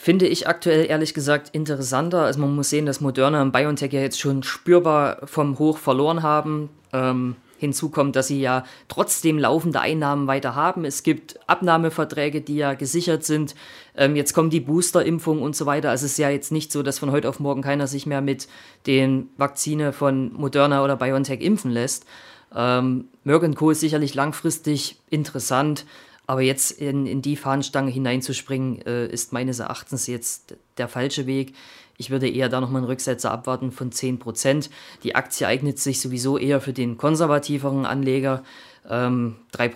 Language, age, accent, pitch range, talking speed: German, 20-39, German, 125-145 Hz, 175 wpm